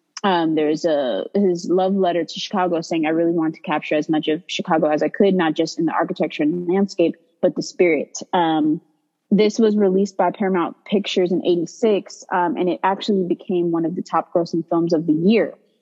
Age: 20-39